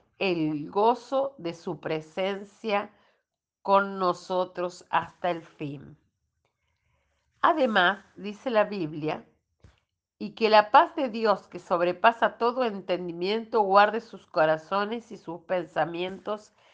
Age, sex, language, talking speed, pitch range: 50-69, female, Spanish, 110 wpm, 180-230 Hz